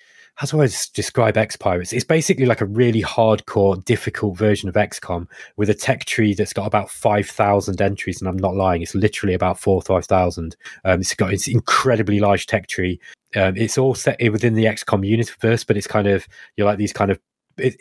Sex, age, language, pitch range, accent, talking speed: male, 20-39, English, 95-115 Hz, British, 210 wpm